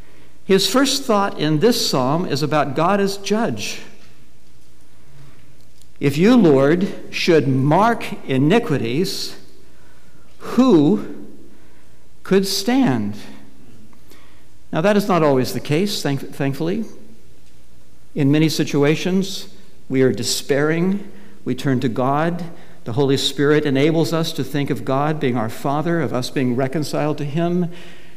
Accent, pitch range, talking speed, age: American, 125-165 Hz, 120 wpm, 60-79